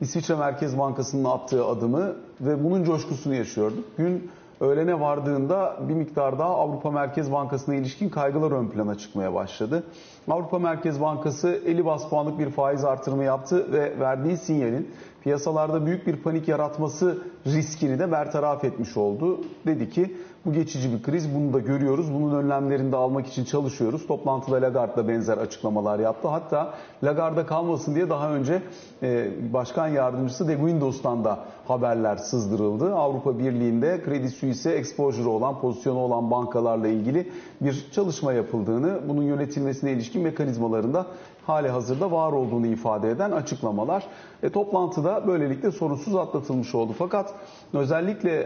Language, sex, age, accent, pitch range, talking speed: Turkish, male, 40-59, native, 125-165 Hz, 140 wpm